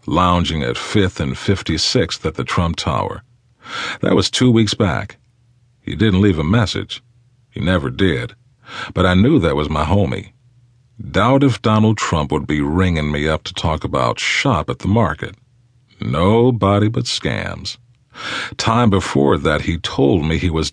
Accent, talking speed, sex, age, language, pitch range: American, 160 wpm, male, 50-69, English, 90-120 Hz